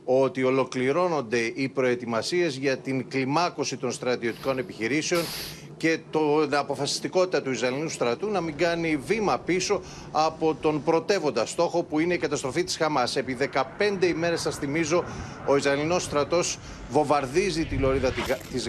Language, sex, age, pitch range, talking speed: Greek, male, 40-59, 140-170 Hz, 140 wpm